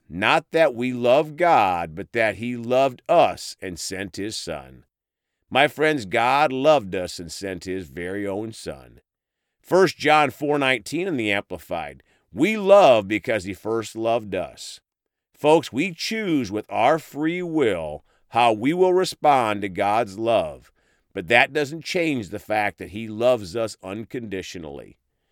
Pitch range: 100-150 Hz